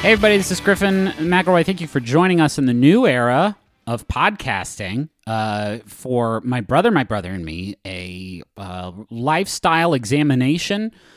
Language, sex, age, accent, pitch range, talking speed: English, male, 30-49, American, 110-160 Hz, 155 wpm